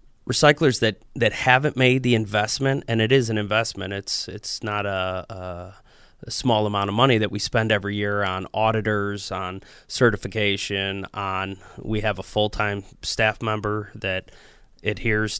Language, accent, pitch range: English, American, 100-115 Hz